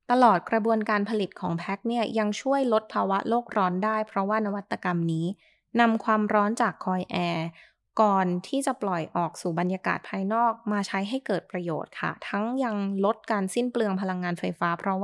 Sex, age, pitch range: female, 20-39, 180-225 Hz